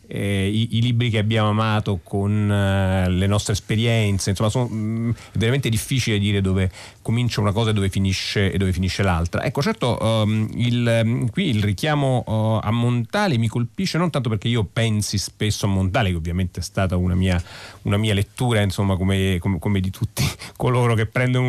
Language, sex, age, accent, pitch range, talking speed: Italian, male, 40-59, native, 95-120 Hz, 190 wpm